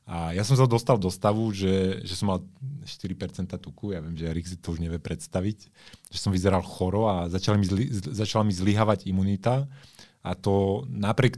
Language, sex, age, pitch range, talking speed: Slovak, male, 30-49, 90-105 Hz, 180 wpm